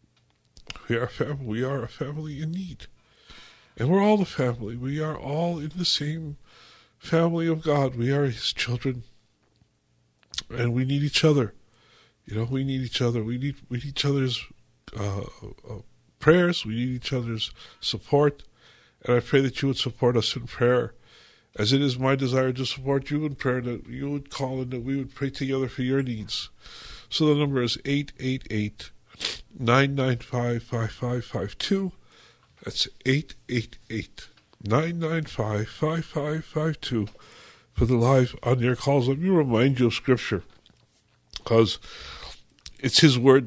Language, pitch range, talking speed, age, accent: English, 120-145 Hz, 165 wpm, 50-69, American